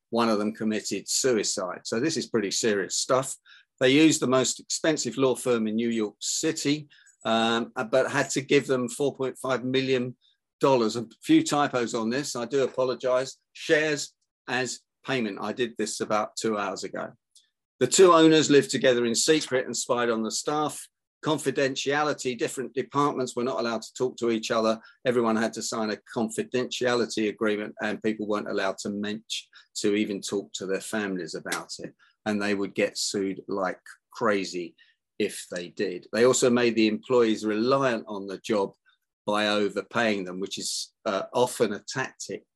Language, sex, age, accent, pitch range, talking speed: English, male, 50-69, British, 105-130 Hz, 170 wpm